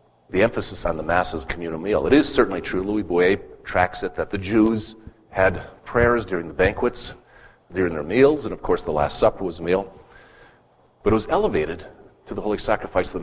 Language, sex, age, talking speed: English, male, 40-59, 215 wpm